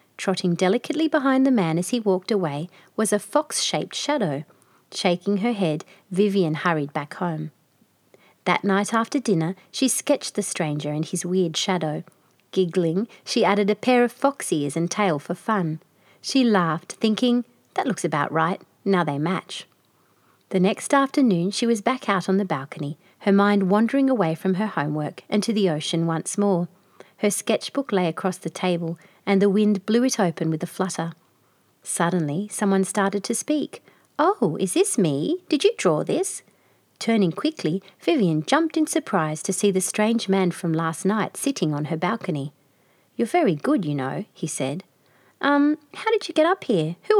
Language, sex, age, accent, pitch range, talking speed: English, female, 30-49, Australian, 165-230 Hz, 175 wpm